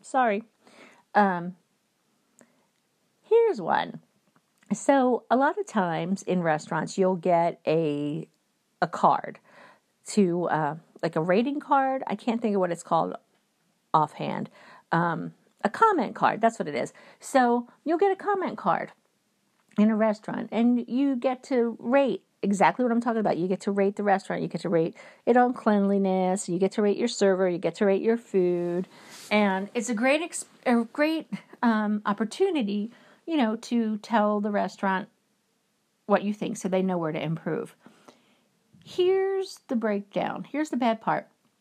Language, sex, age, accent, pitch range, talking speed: English, female, 50-69, American, 195-250 Hz, 165 wpm